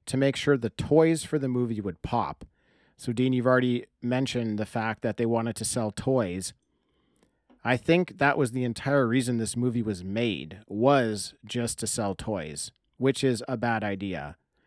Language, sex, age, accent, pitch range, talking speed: English, male, 40-59, American, 115-140 Hz, 180 wpm